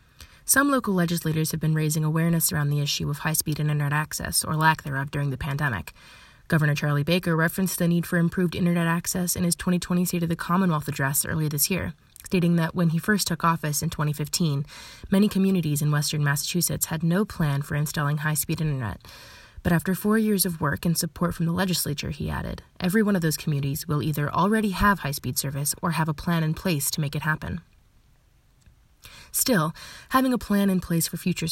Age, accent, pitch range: 20-39, American, 150-175 Hz